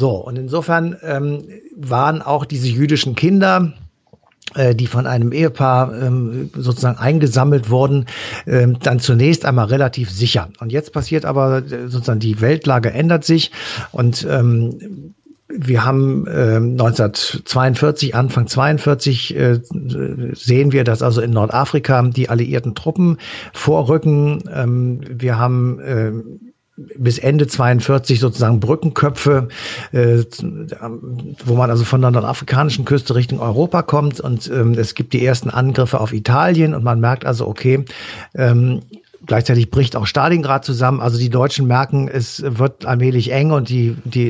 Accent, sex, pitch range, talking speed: German, male, 120-145 Hz, 140 wpm